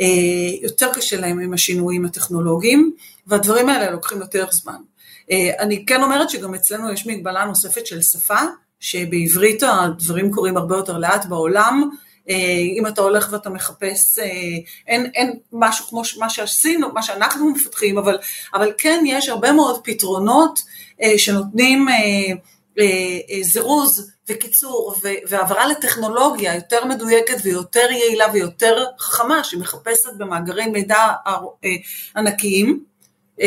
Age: 40-59